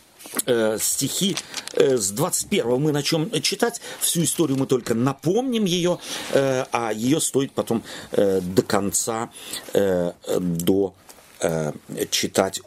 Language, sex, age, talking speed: Russian, male, 40-59, 125 wpm